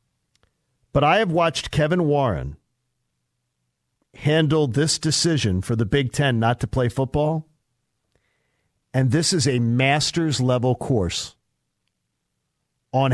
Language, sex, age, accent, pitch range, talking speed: English, male, 50-69, American, 125-160 Hz, 115 wpm